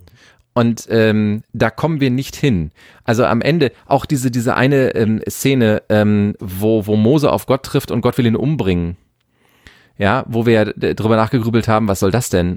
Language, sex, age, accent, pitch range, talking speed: German, male, 40-59, German, 110-145 Hz, 180 wpm